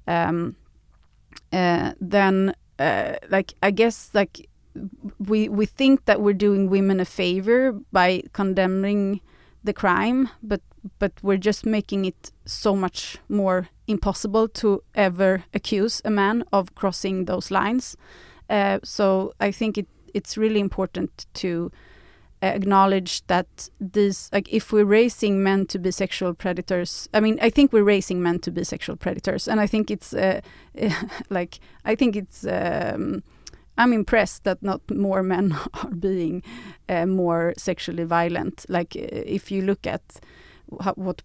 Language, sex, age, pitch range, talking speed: English, female, 30-49, 180-210 Hz, 145 wpm